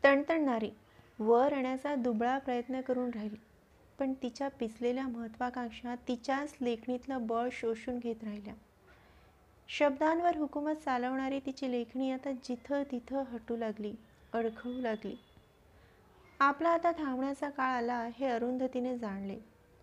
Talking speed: 110 wpm